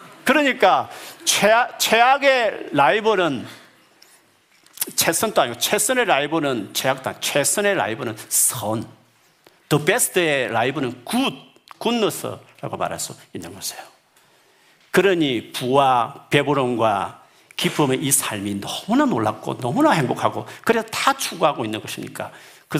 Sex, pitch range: male, 125-190 Hz